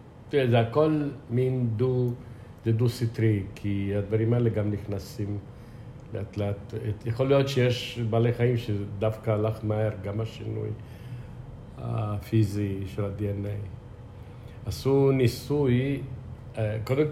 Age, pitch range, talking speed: 50-69, 105-125 Hz, 110 wpm